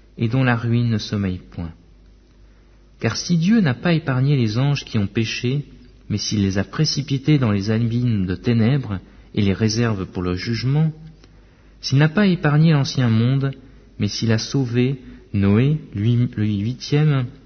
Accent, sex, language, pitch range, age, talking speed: French, male, French, 100-140 Hz, 50-69, 170 wpm